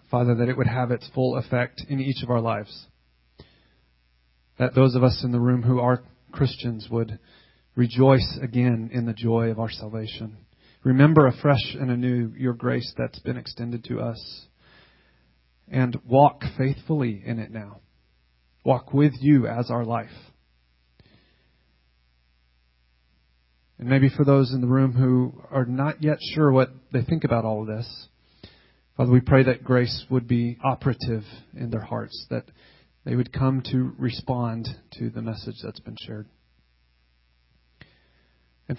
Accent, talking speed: American, 150 wpm